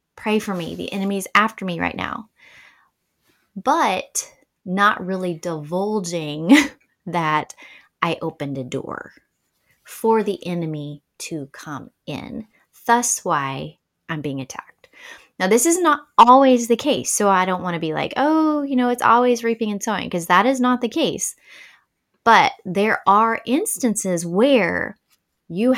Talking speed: 145 wpm